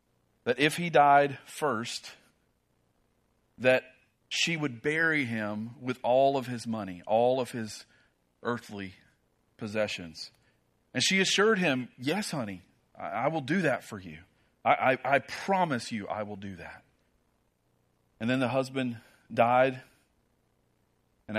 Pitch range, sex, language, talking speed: 105-130 Hz, male, English, 130 wpm